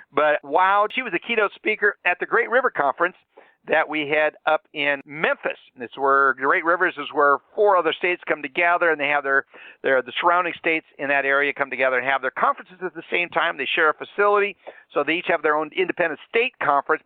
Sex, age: male, 50-69